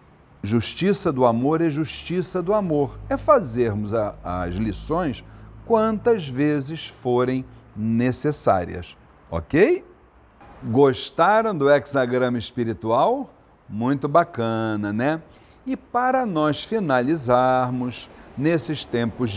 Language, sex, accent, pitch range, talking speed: Portuguese, male, Brazilian, 115-175 Hz, 90 wpm